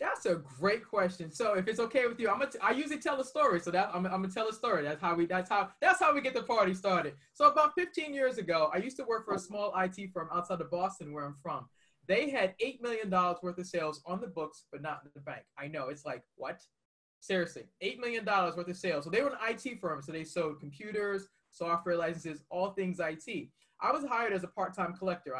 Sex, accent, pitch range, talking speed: male, American, 175-235 Hz, 255 wpm